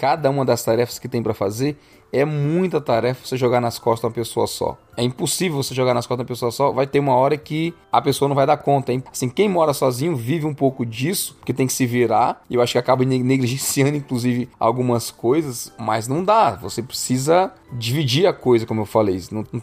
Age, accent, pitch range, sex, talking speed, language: 20-39, Brazilian, 120-150 Hz, male, 225 wpm, Portuguese